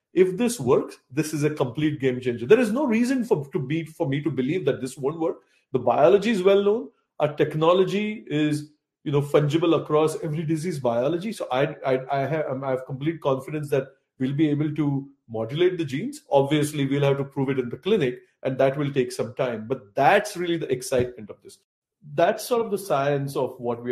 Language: English